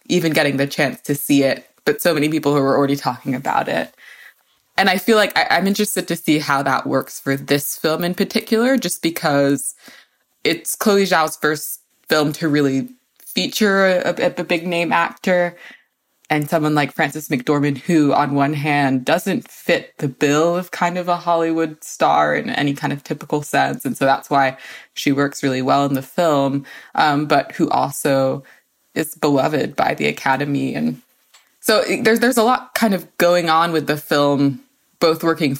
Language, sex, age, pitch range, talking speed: English, female, 20-39, 140-175 Hz, 180 wpm